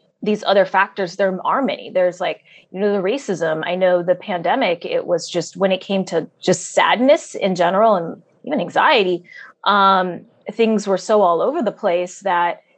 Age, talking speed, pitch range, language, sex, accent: 20-39, 185 wpm, 170-200 Hz, English, female, American